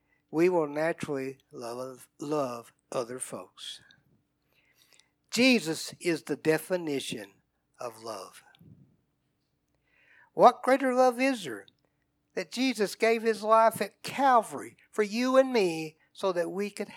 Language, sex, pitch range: English, male, 160-240 Hz